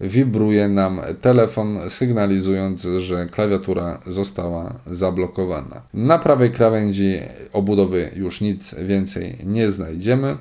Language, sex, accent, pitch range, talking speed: Polish, male, native, 95-120 Hz, 100 wpm